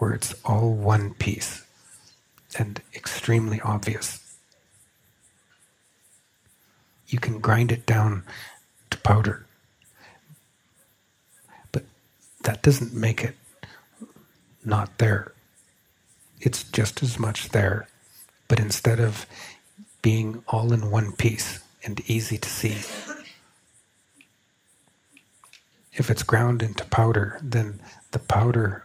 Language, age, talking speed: English, 50-69, 100 wpm